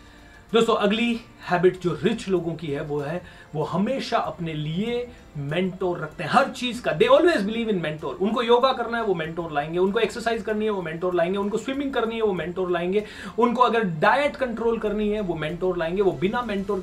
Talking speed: 205 wpm